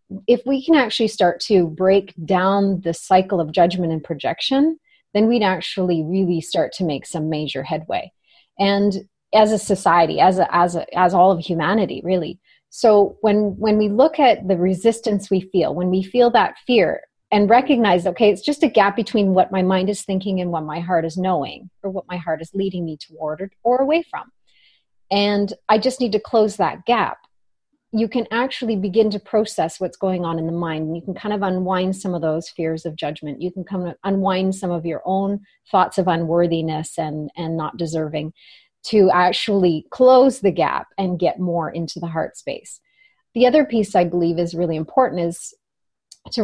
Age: 30-49